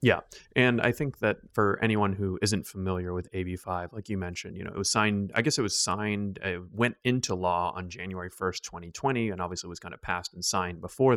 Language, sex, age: English, male, 30-49